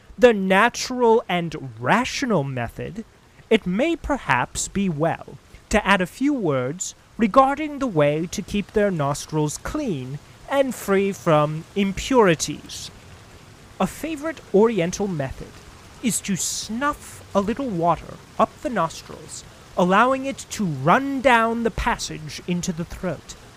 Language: English